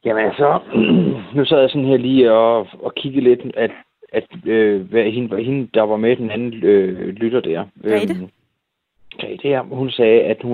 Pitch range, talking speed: 105-130 Hz, 205 wpm